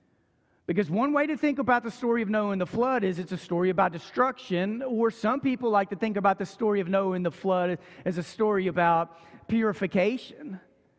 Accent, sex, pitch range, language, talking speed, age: American, male, 180-240 Hz, English, 205 wpm, 40-59